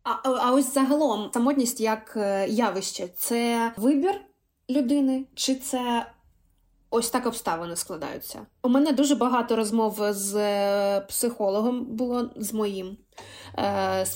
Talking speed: 120 wpm